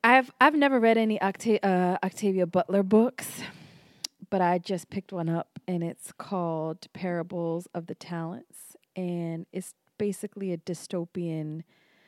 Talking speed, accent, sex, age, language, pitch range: 140 wpm, American, female, 20-39, English, 170-200 Hz